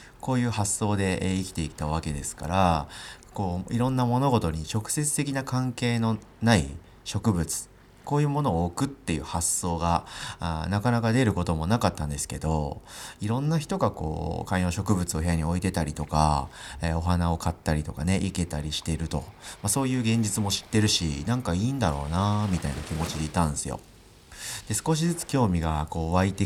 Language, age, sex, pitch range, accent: Japanese, 40-59, male, 80-115 Hz, native